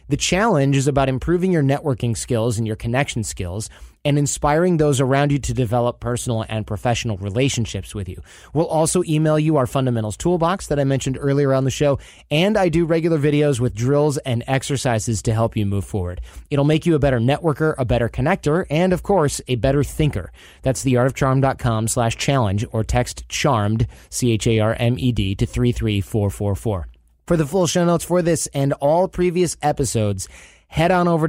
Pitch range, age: 115-150 Hz, 30-49